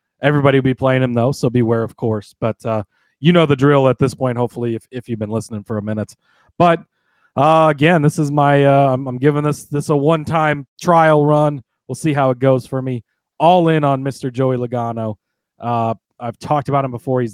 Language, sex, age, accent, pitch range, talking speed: English, male, 30-49, American, 120-145 Hz, 215 wpm